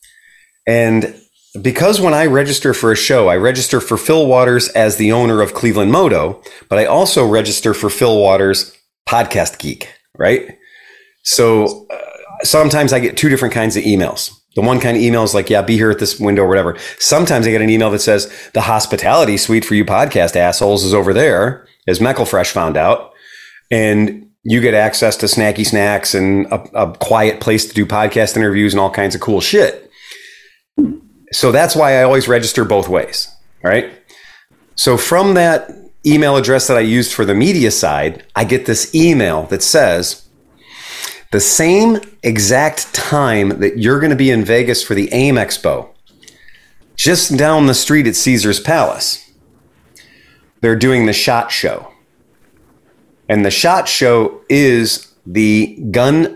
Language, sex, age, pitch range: English, male, 30-49, 105-150 Hz